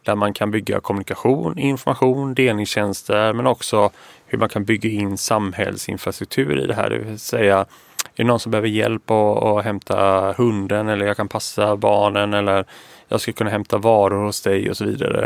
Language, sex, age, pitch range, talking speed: Swedish, male, 20-39, 105-120 Hz, 180 wpm